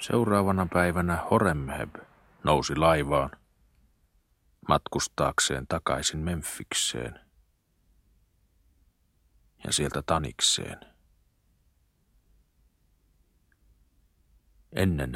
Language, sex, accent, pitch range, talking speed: Finnish, male, native, 70-85 Hz, 50 wpm